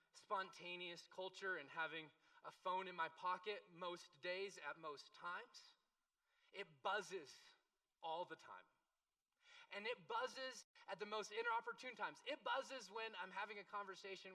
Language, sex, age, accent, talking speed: English, male, 30-49, American, 140 wpm